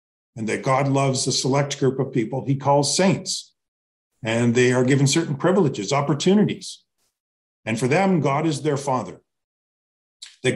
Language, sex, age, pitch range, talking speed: English, male, 40-59, 110-155 Hz, 155 wpm